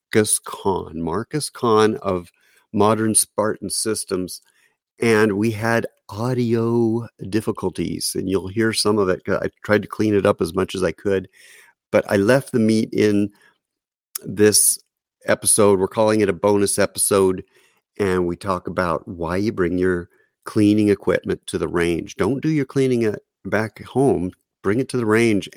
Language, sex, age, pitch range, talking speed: English, male, 50-69, 100-130 Hz, 160 wpm